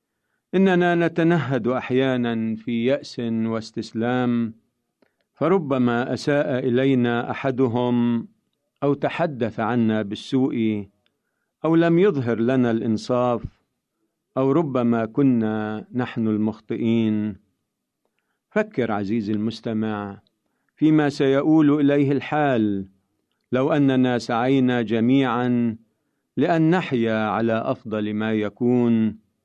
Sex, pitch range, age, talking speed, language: male, 110-145 Hz, 50-69, 85 wpm, Arabic